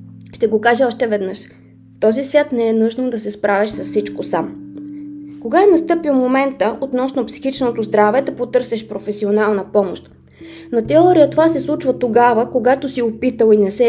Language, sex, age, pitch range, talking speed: Bulgarian, female, 20-39, 210-270 Hz, 170 wpm